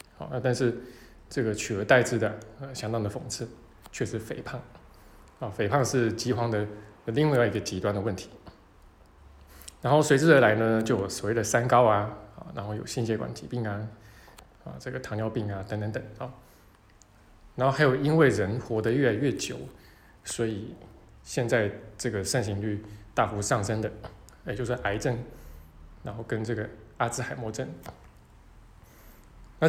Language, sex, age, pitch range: Chinese, male, 20-39, 105-125 Hz